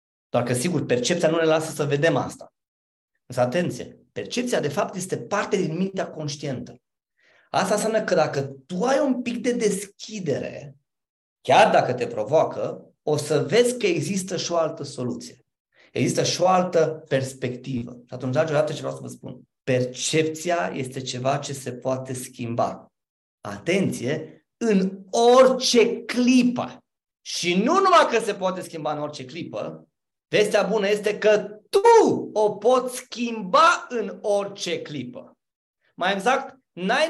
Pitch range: 150-235 Hz